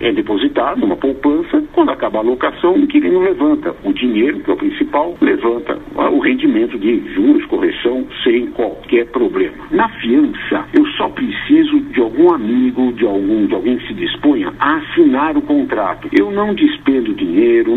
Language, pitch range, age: Portuguese, 290-335 Hz, 60-79